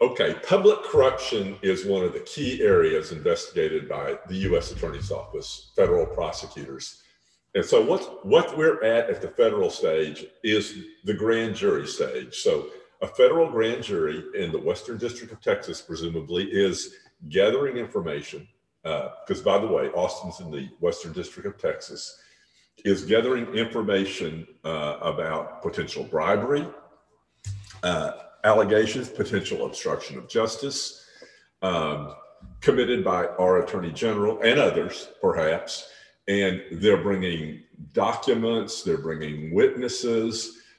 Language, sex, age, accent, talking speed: English, male, 50-69, American, 125 wpm